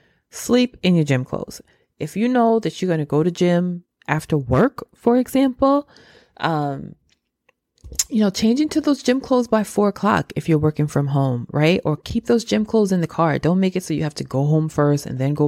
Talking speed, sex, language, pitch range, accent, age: 220 wpm, female, English, 155-210 Hz, American, 20-39